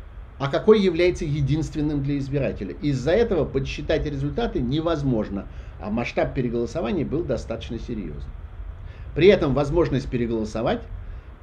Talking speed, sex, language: 110 wpm, male, Russian